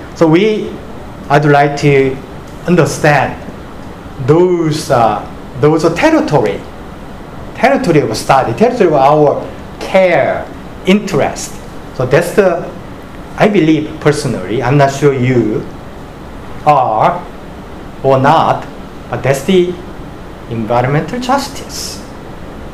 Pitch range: 135-180 Hz